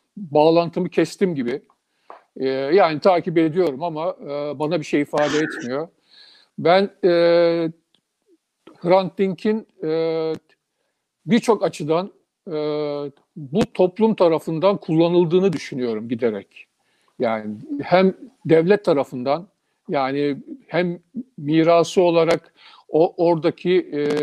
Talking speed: 95 wpm